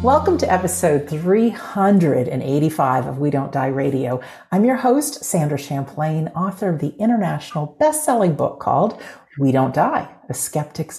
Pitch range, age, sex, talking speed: 145-220 Hz, 50-69, female, 145 wpm